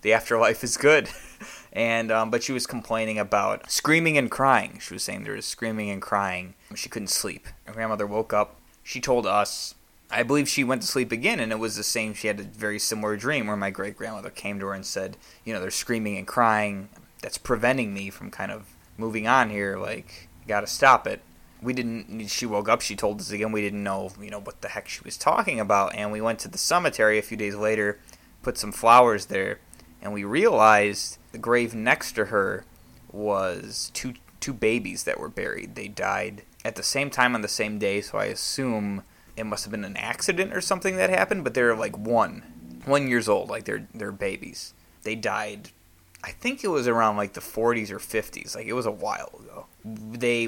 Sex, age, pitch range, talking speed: male, 20-39, 100-115 Hz, 215 wpm